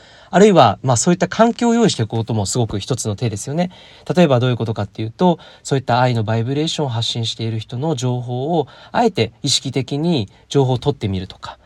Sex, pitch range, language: male, 110-170 Hz, Japanese